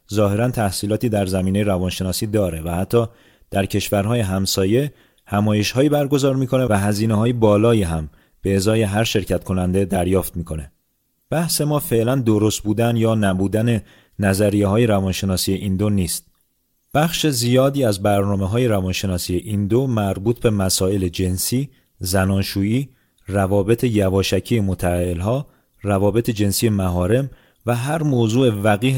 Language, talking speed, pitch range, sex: Persian, 130 wpm, 100-125 Hz, male